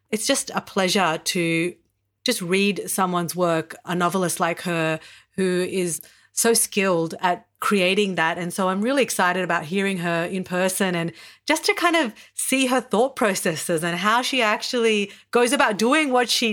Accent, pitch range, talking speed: Australian, 175-225 Hz, 175 wpm